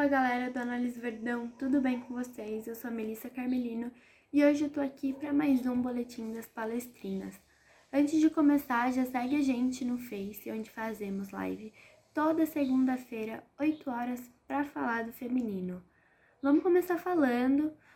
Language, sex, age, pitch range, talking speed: Portuguese, female, 10-29, 235-290 Hz, 160 wpm